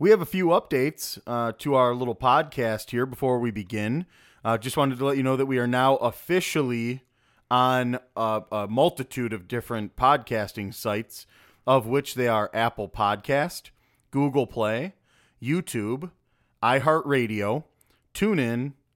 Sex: male